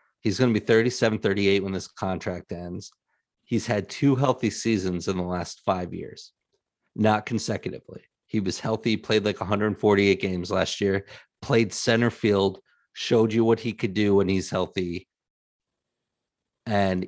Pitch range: 95-115 Hz